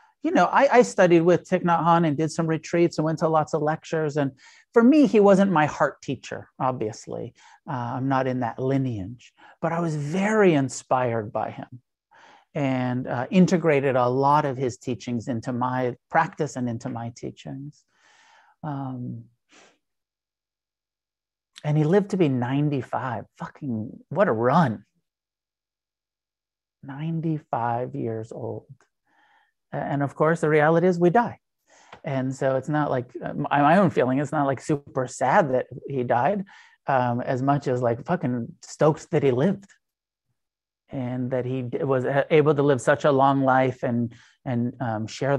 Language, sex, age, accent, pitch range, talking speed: English, male, 50-69, American, 125-155 Hz, 155 wpm